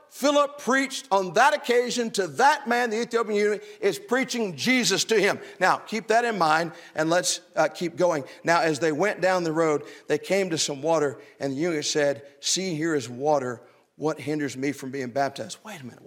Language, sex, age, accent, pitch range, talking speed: English, male, 50-69, American, 205-320 Hz, 205 wpm